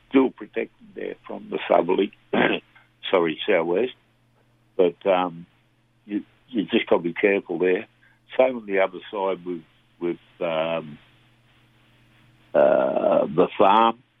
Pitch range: 90-115 Hz